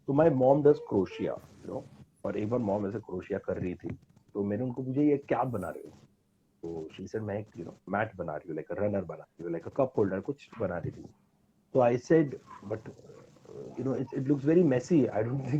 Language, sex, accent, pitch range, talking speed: Hindi, male, native, 110-150 Hz, 45 wpm